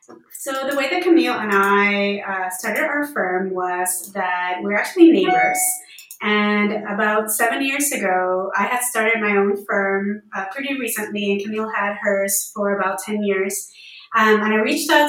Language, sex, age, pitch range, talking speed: English, female, 20-39, 195-250 Hz, 170 wpm